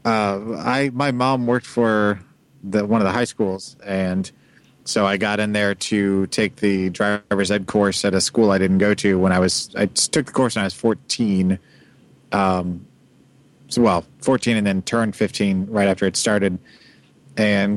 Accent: American